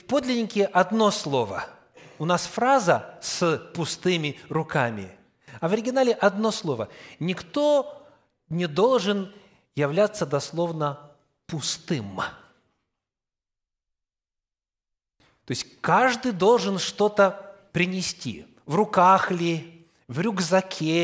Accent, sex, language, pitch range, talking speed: native, male, Russian, 145-210 Hz, 90 wpm